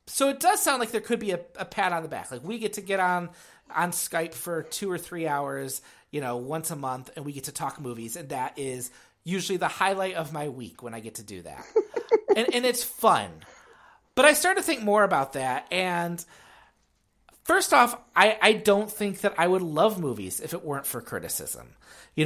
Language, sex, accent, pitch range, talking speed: English, male, American, 140-200 Hz, 225 wpm